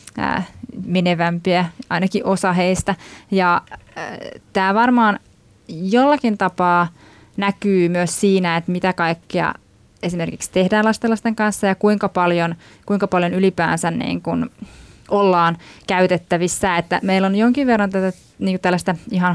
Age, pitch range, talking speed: 20-39, 180-210 Hz, 120 wpm